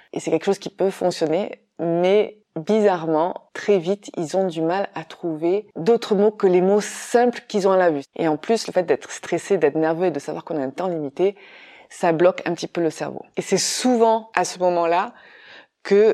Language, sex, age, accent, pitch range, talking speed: French, female, 20-39, French, 165-205 Hz, 220 wpm